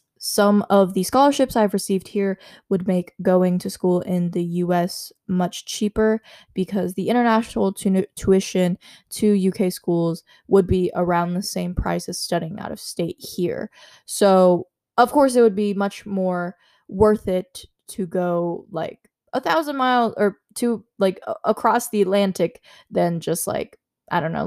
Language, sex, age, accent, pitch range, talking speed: English, female, 10-29, American, 180-220 Hz, 160 wpm